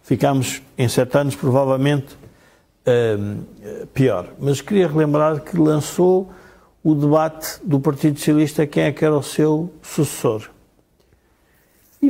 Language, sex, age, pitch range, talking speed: Portuguese, male, 60-79, 140-175 Hz, 120 wpm